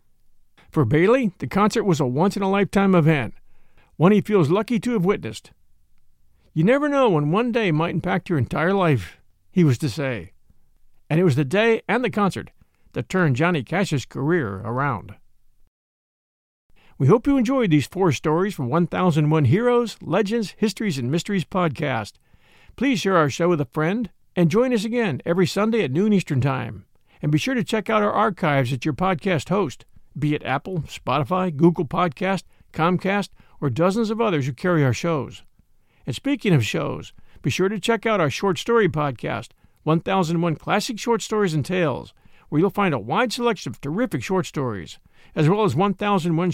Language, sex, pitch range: English, male, 145-205 Hz